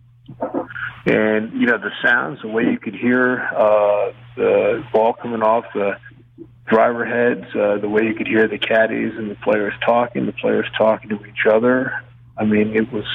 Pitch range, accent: 110-125 Hz, American